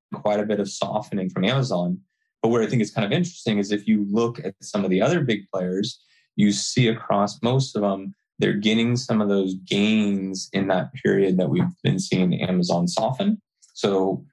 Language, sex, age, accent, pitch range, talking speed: English, male, 20-39, American, 95-115 Hz, 200 wpm